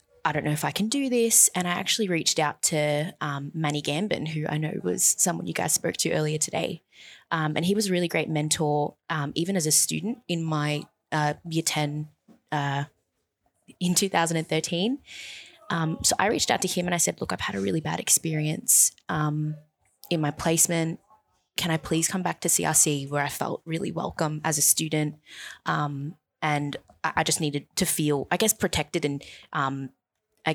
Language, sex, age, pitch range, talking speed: English, female, 20-39, 150-175 Hz, 195 wpm